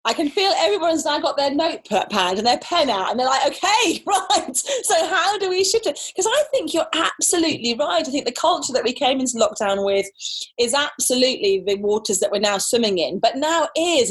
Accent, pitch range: British, 220-310 Hz